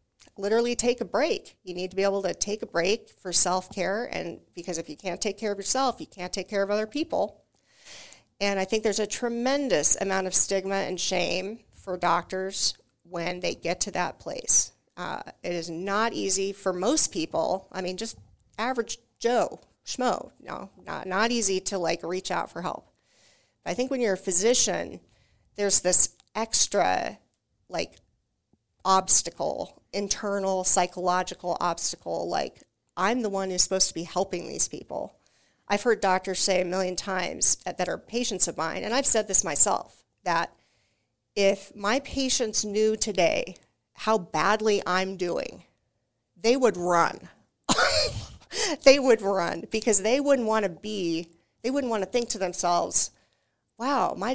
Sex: female